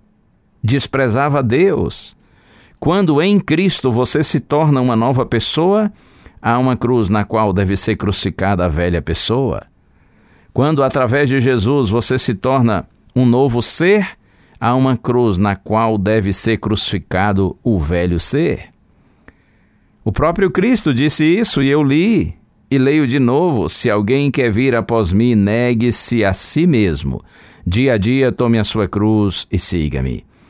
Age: 60-79